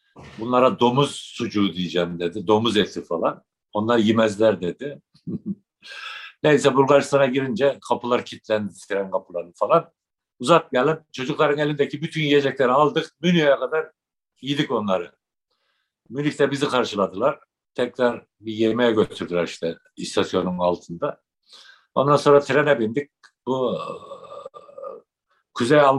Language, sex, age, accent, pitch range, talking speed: Turkish, male, 60-79, native, 105-145 Hz, 105 wpm